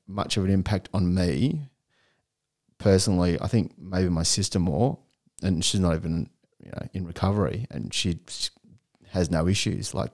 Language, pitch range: English, 90-110 Hz